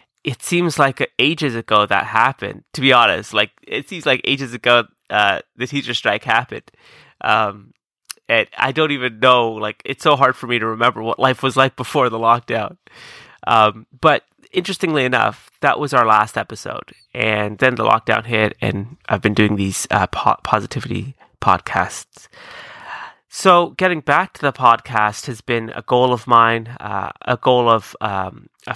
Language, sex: English, male